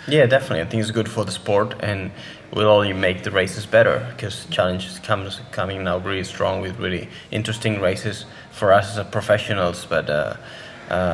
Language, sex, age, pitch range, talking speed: English, male, 20-39, 95-105 Hz, 185 wpm